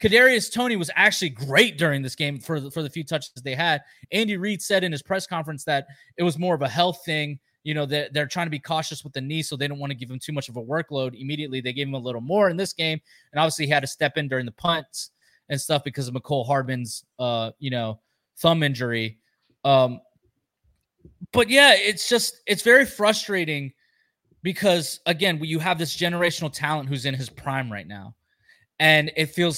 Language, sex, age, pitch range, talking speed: English, male, 20-39, 140-185 Hz, 225 wpm